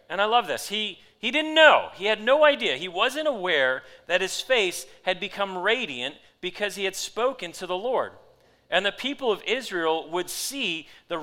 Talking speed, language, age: 190 wpm, English, 40-59